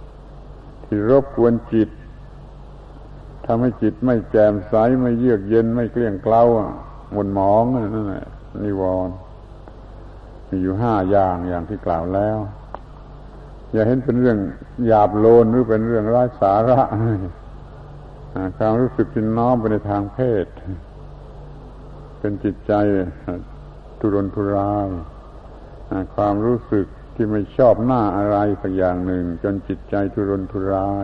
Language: Thai